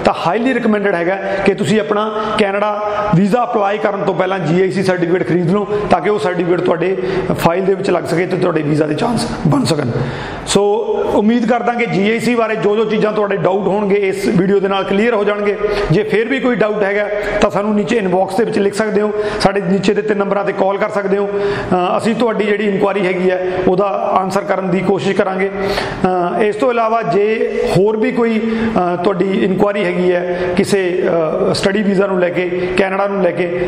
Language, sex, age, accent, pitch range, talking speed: Hindi, male, 40-59, native, 185-210 Hz, 175 wpm